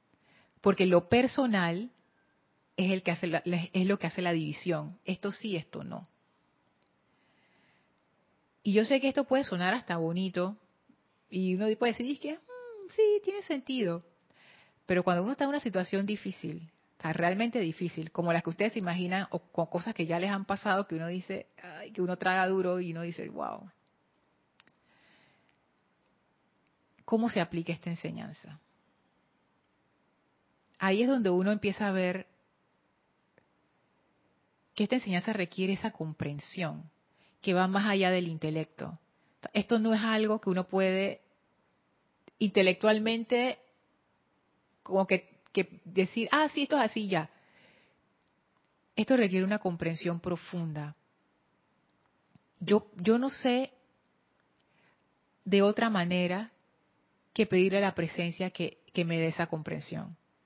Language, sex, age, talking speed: Spanish, female, 30-49, 130 wpm